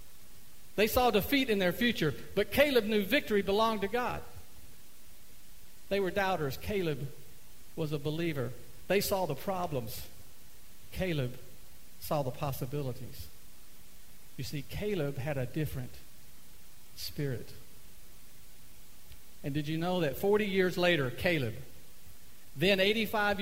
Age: 50-69